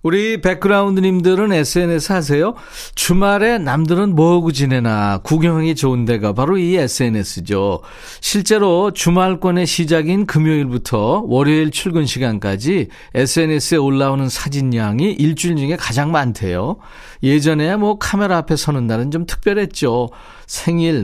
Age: 40-59